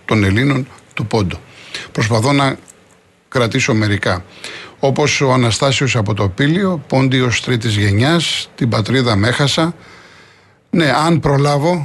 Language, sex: Greek, male